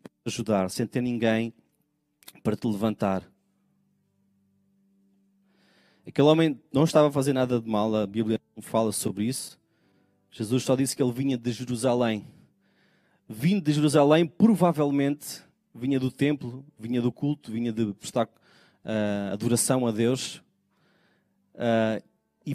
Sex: male